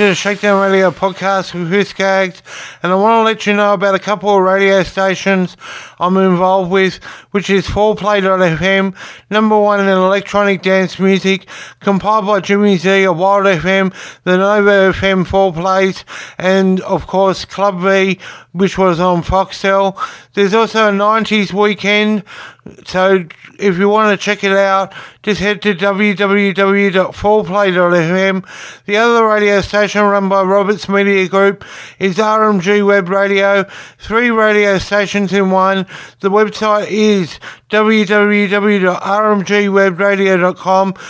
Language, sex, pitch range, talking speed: English, male, 190-205 Hz, 135 wpm